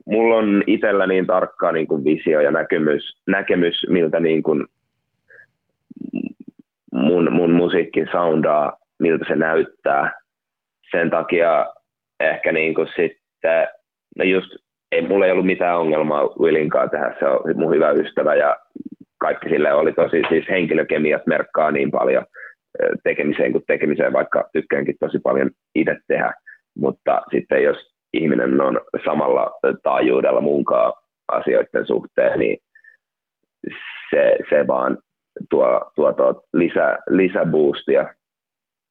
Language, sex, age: Finnish, male, 30-49